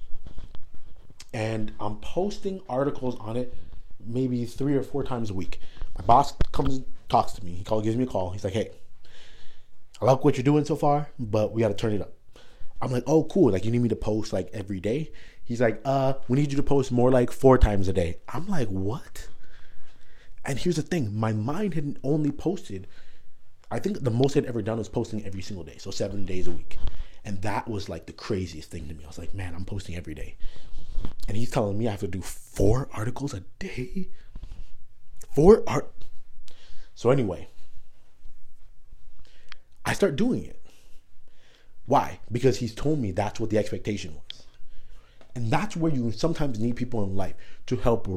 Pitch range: 100-130 Hz